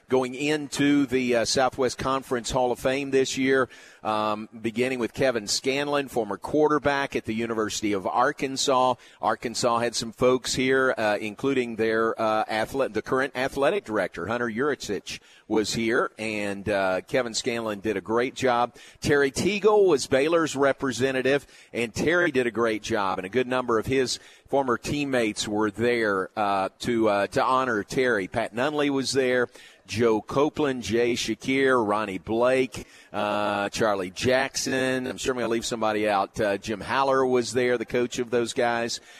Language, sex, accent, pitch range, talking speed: English, male, American, 110-130 Hz, 165 wpm